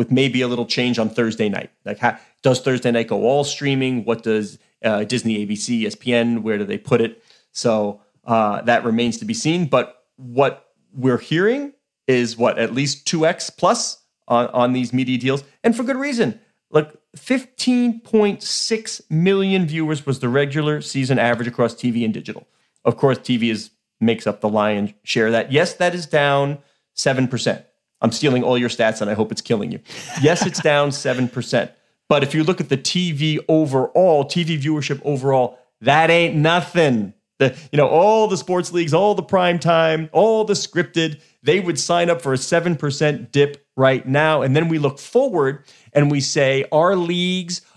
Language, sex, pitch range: English, male, 125-175 Hz